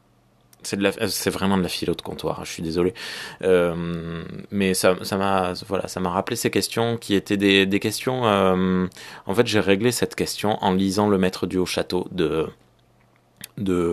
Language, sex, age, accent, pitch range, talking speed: French, male, 20-39, French, 90-115 Hz, 195 wpm